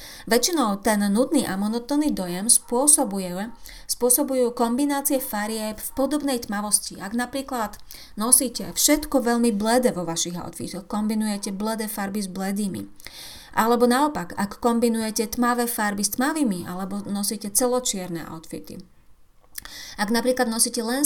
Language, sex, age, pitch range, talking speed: Slovak, female, 30-49, 205-250 Hz, 120 wpm